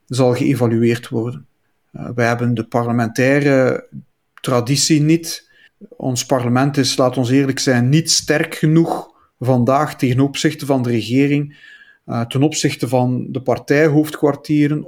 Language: Dutch